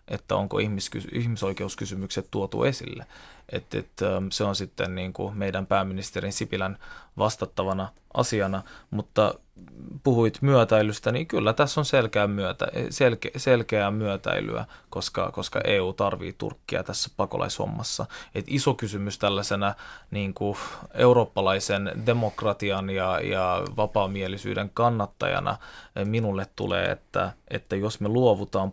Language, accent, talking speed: Finnish, native, 110 wpm